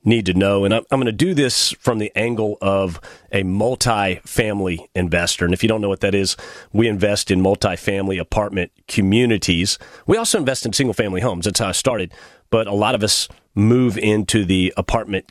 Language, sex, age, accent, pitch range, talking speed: English, male, 40-59, American, 95-115 Hz, 195 wpm